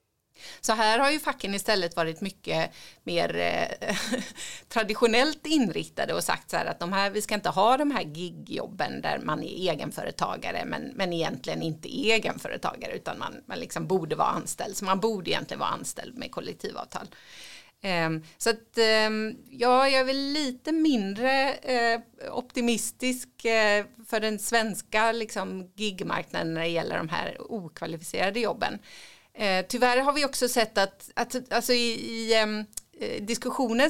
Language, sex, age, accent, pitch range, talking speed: Swedish, female, 30-49, native, 190-250 Hz, 140 wpm